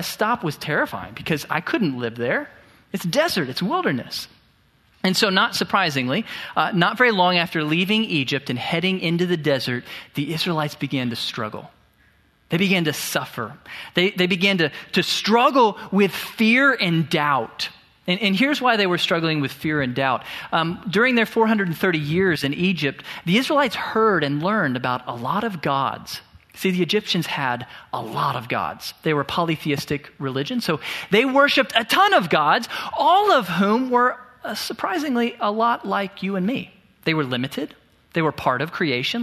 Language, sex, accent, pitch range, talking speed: English, male, American, 150-215 Hz, 175 wpm